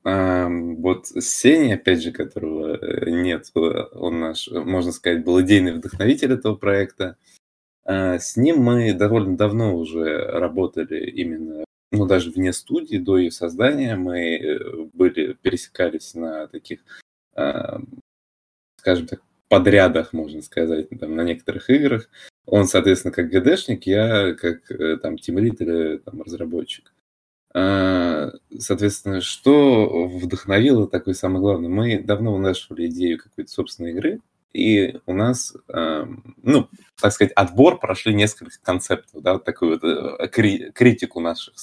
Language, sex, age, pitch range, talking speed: Russian, male, 20-39, 85-110 Hz, 125 wpm